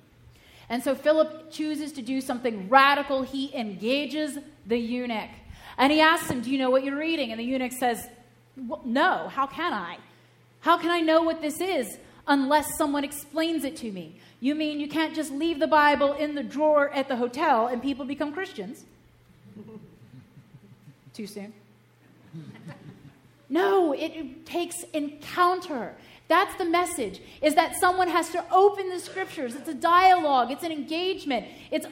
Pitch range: 245-315 Hz